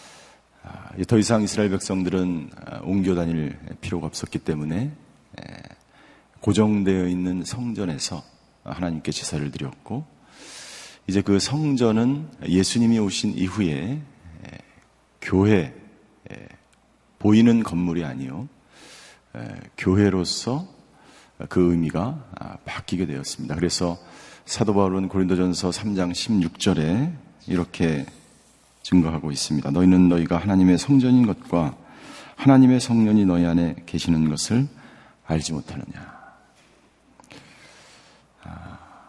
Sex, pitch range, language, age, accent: male, 85-115 Hz, Korean, 40-59, native